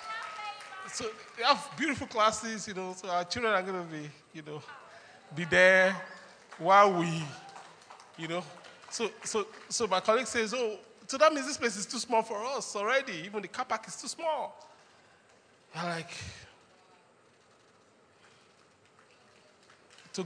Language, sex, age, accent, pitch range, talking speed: English, male, 20-39, Nigerian, 175-265 Hz, 150 wpm